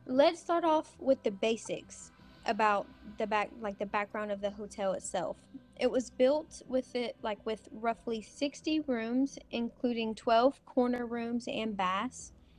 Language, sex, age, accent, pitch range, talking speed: English, female, 20-39, American, 210-265 Hz, 155 wpm